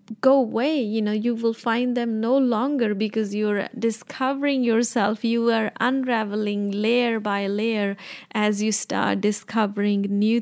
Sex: female